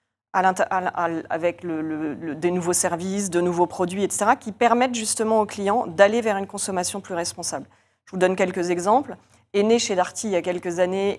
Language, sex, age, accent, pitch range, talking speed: French, female, 30-49, French, 165-200 Hz, 195 wpm